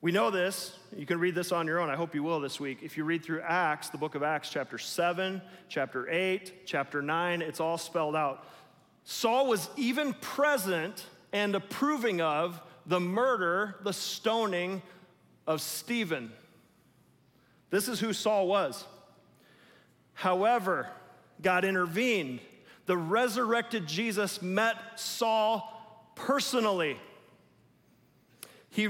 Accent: American